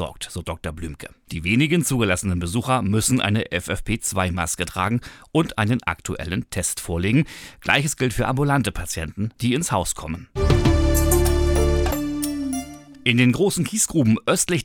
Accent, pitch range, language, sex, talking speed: German, 90-130 Hz, German, male, 125 wpm